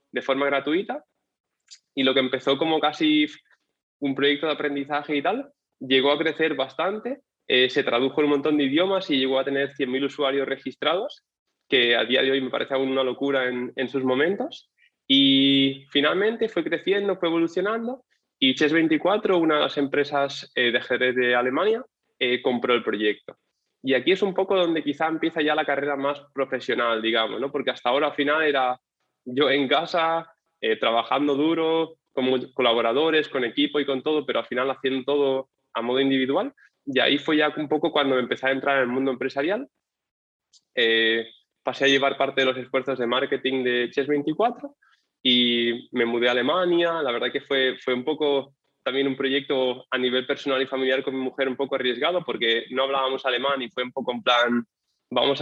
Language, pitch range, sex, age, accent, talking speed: Spanish, 130-150 Hz, male, 20-39, Spanish, 190 wpm